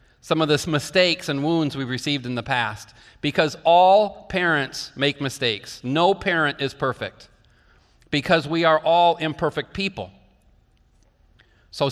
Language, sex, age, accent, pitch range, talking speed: English, male, 40-59, American, 135-180 Hz, 135 wpm